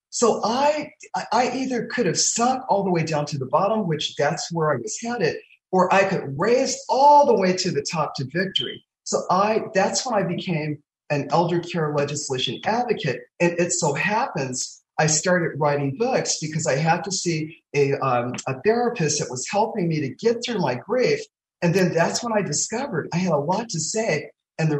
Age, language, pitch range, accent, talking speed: 40-59, English, 150-200 Hz, American, 200 wpm